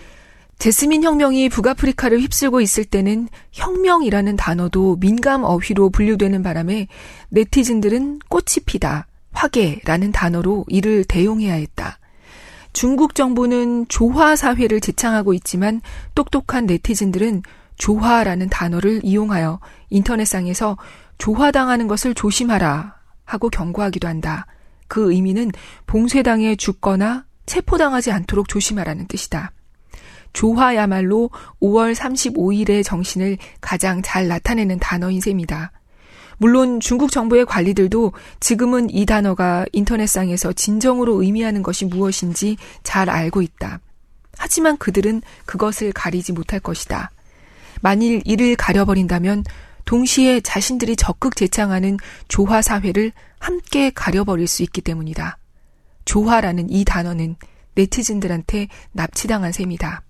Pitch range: 185-235 Hz